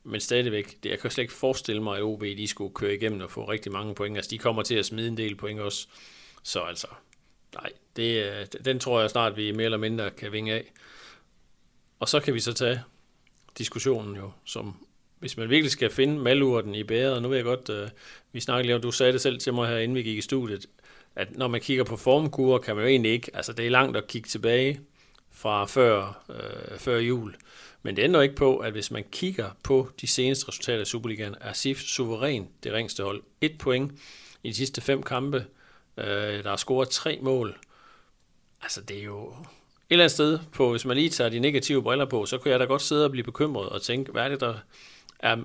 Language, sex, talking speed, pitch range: Danish, male, 230 wpm, 105-135 Hz